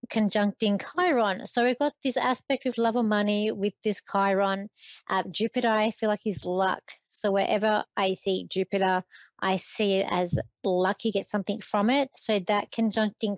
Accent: Australian